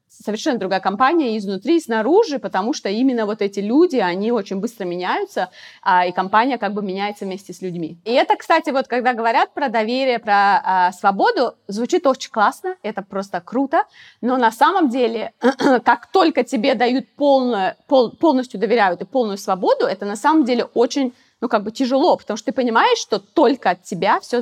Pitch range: 215-285 Hz